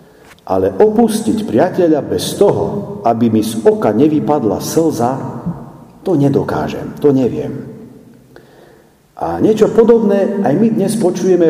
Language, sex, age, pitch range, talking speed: Slovak, male, 50-69, 120-185 Hz, 115 wpm